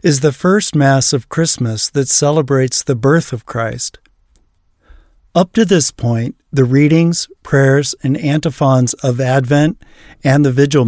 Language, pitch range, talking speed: English, 115-150 Hz, 145 wpm